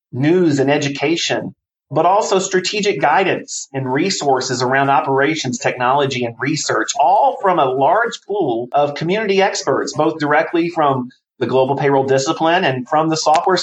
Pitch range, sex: 135-175 Hz, male